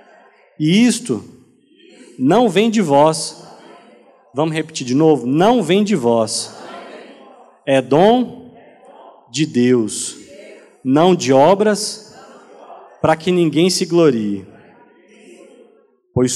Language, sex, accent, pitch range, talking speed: Portuguese, male, Brazilian, 135-195 Hz, 100 wpm